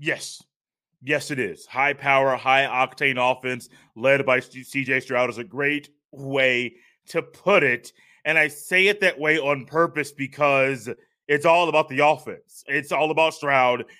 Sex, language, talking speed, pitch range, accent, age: male, English, 165 wpm, 145-190 Hz, American, 20-39